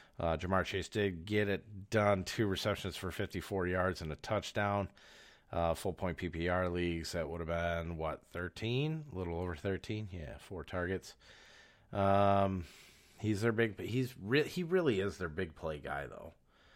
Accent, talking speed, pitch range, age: American, 170 wpm, 80-105 Hz, 40-59